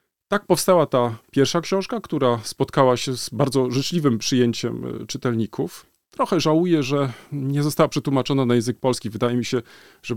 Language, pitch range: Polish, 125-175 Hz